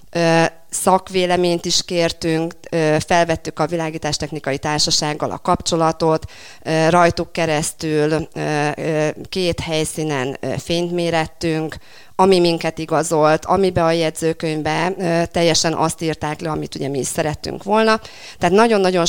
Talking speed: 100 wpm